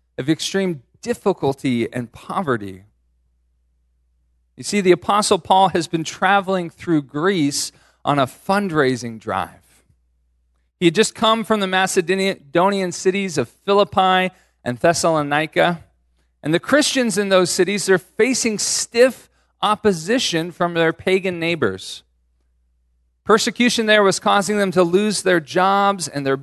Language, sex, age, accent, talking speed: English, male, 40-59, American, 125 wpm